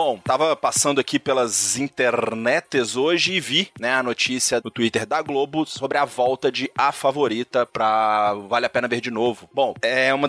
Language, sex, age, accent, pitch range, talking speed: Portuguese, male, 20-39, Brazilian, 110-135 Hz, 185 wpm